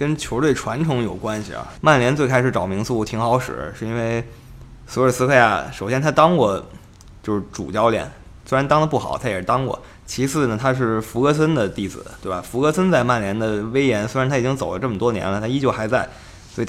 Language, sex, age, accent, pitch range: Chinese, male, 20-39, native, 105-135 Hz